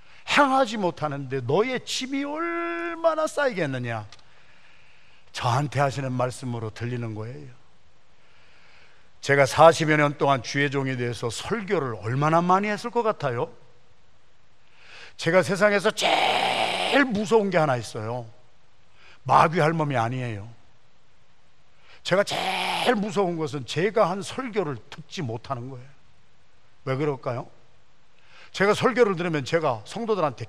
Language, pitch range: Korean, 135-210 Hz